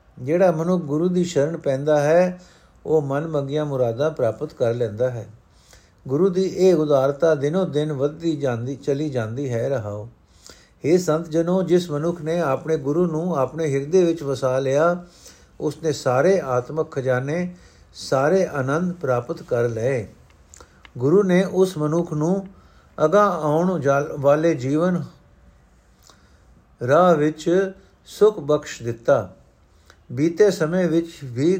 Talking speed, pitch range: 120 wpm, 135-175 Hz